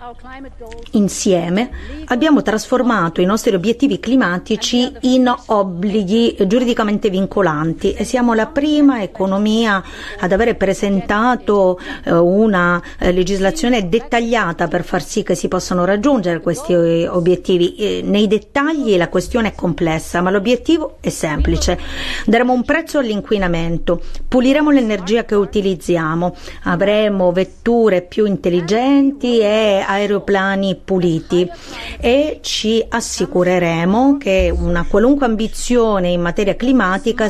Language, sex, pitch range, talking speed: Italian, female, 185-230 Hz, 105 wpm